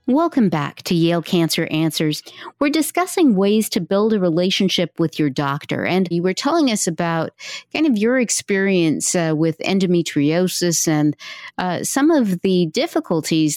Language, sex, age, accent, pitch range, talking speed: English, female, 50-69, American, 160-200 Hz, 155 wpm